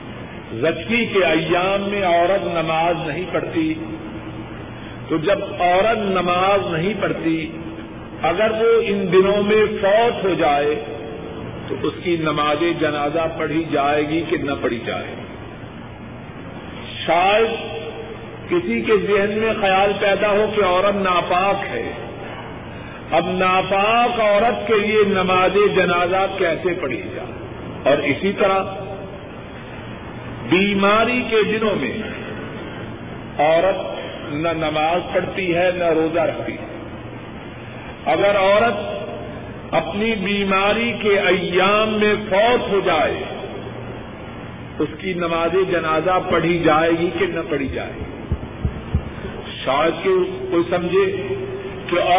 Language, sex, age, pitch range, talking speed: Urdu, male, 50-69, 155-205 Hz, 115 wpm